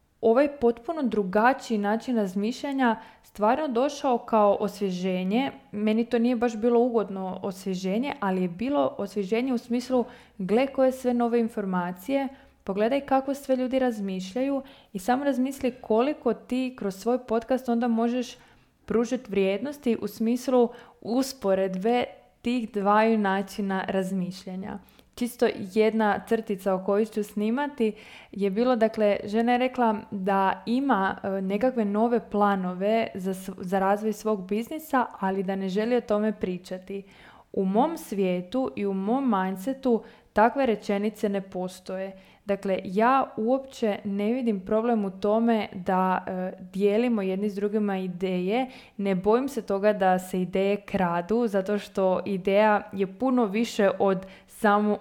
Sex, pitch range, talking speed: female, 195-240 Hz, 135 wpm